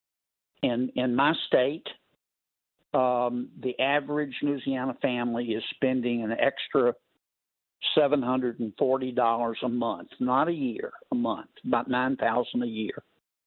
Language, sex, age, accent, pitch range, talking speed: English, male, 60-79, American, 120-145 Hz, 110 wpm